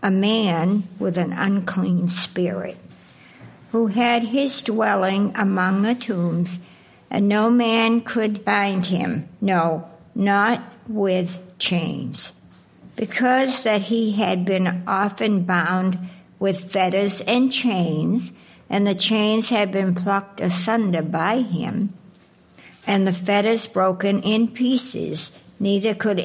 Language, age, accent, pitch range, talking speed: English, 60-79, American, 180-220 Hz, 115 wpm